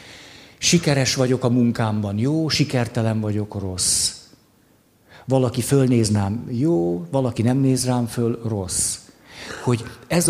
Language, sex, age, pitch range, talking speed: Hungarian, male, 50-69, 110-135 Hz, 110 wpm